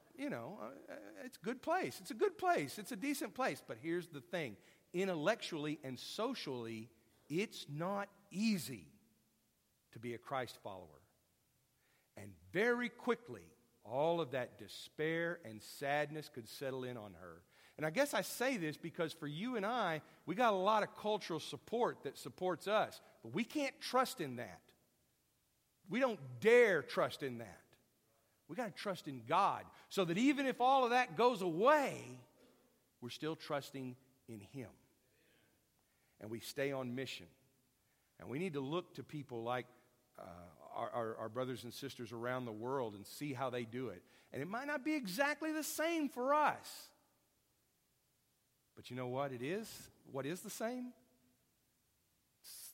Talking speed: 165 wpm